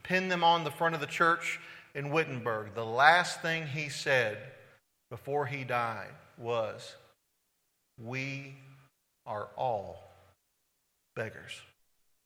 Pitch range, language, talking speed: 135-190 Hz, English, 110 wpm